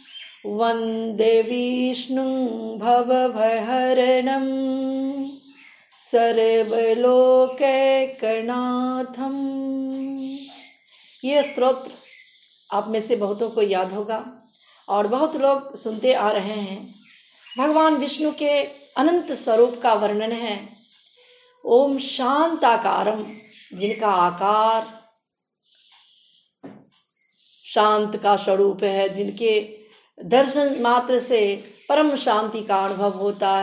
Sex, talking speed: female, 85 wpm